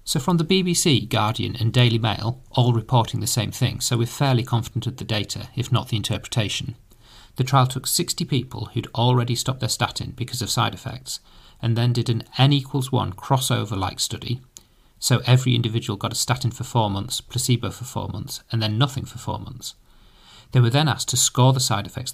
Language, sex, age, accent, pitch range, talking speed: English, male, 40-59, British, 115-130 Hz, 205 wpm